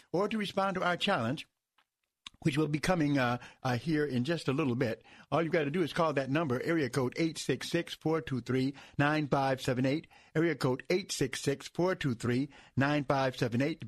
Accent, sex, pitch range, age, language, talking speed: American, male, 130-165 Hz, 60-79, English, 145 wpm